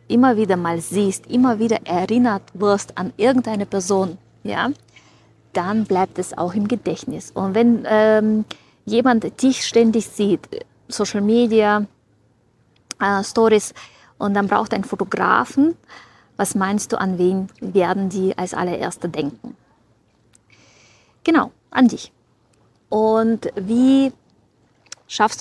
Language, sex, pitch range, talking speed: German, female, 185-225 Hz, 115 wpm